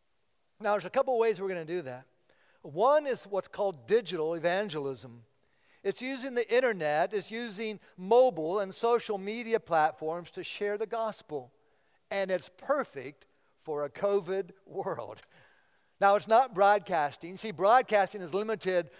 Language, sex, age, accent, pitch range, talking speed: English, male, 50-69, American, 170-225 Hz, 150 wpm